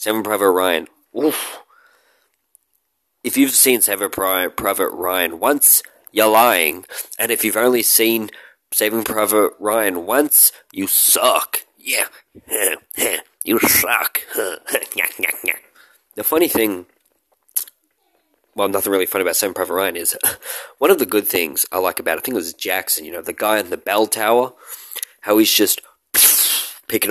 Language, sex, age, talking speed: English, male, 20-39, 140 wpm